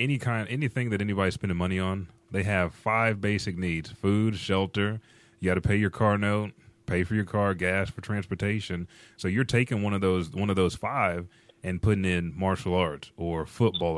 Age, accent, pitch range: 30-49, American, 85-105 Hz